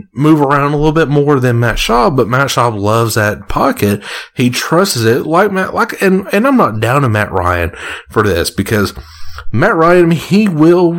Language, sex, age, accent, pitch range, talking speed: English, male, 30-49, American, 105-145 Hz, 200 wpm